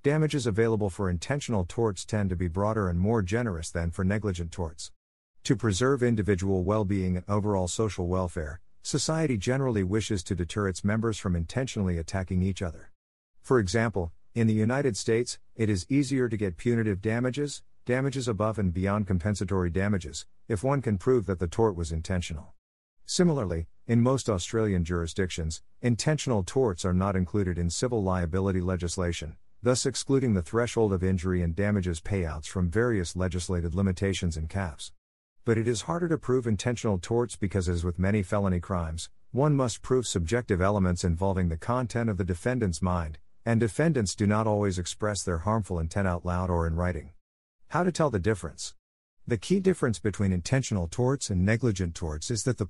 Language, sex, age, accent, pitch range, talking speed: English, male, 50-69, American, 90-115 Hz, 170 wpm